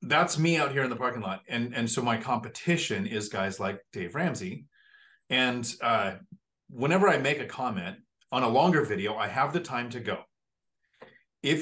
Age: 30-49